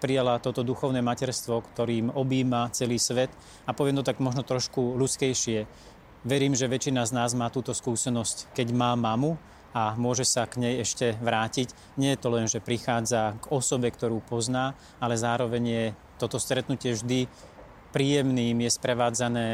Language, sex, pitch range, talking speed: Slovak, male, 120-135 Hz, 165 wpm